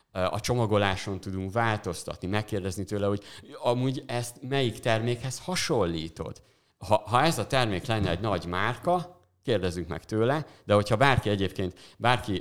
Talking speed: 140 wpm